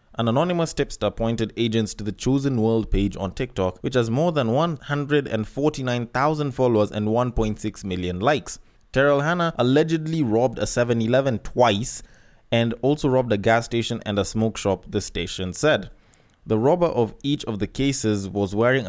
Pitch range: 105-135 Hz